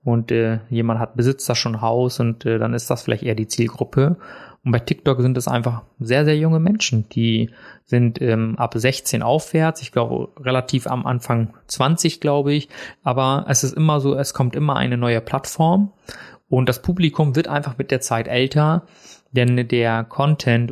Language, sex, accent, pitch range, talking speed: German, male, German, 115-145 Hz, 185 wpm